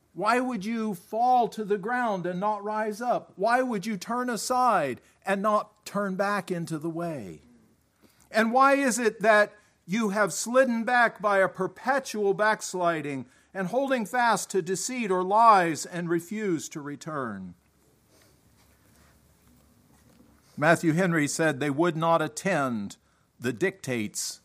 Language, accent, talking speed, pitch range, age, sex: English, American, 135 wpm, 155-215 Hz, 50-69, male